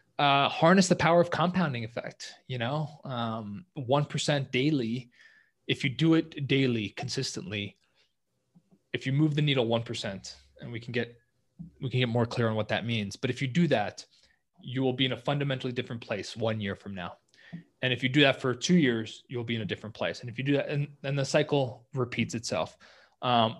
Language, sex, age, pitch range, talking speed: English, male, 20-39, 120-150 Hz, 205 wpm